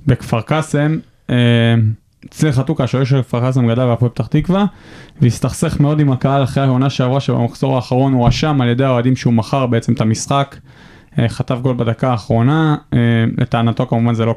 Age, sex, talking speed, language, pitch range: 20-39, male, 160 wpm, Hebrew, 120-150 Hz